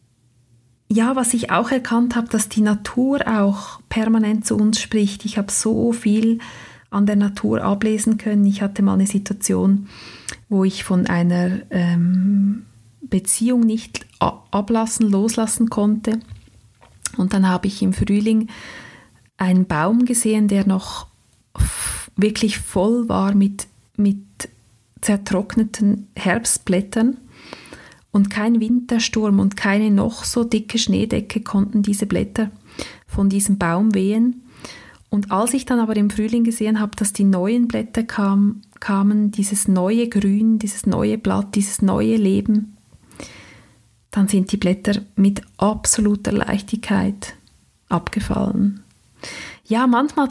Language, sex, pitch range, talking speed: German, female, 195-225 Hz, 125 wpm